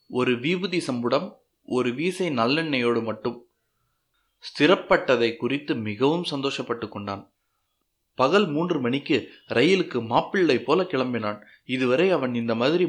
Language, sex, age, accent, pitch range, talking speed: Tamil, male, 30-49, native, 115-155 Hz, 105 wpm